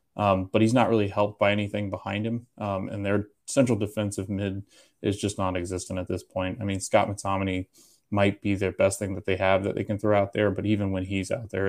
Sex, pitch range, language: male, 95-110 Hz, English